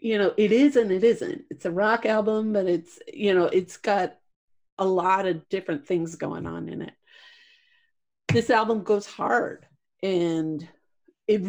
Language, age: English, 50-69